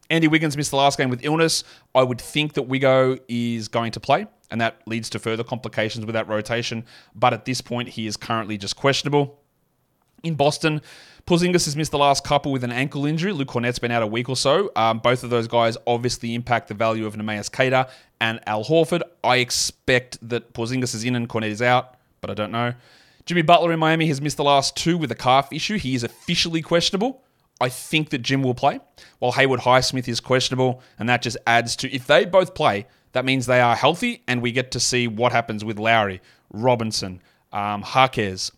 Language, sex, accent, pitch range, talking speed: English, male, Australian, 115-145 Hz, 215 wpm